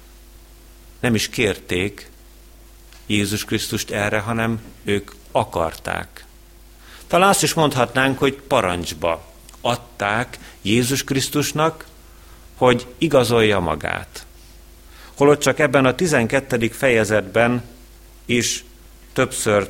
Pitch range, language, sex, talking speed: 85-120 Hz, Hungarian, male, 90 wpm